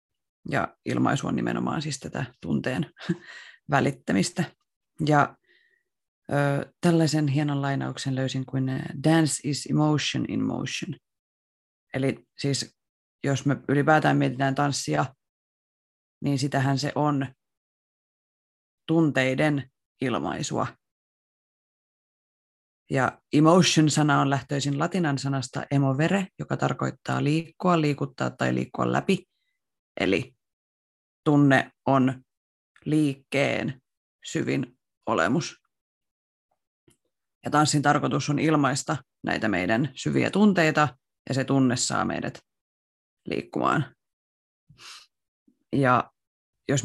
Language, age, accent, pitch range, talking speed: Finnish, 30-49, native, 110-150 Hz, 85 wpm